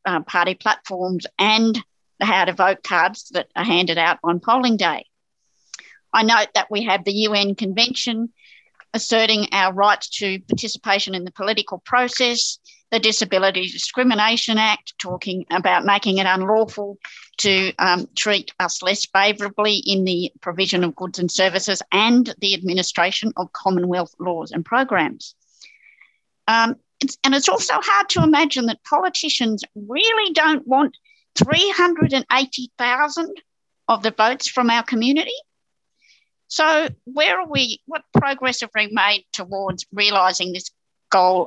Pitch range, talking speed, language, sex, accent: 190-245 Hz, 135 wpm, English, female, Australian